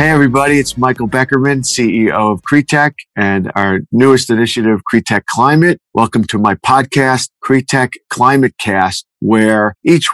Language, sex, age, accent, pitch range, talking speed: English, male, 50-69, American, 110-135 Hz, 130 wpm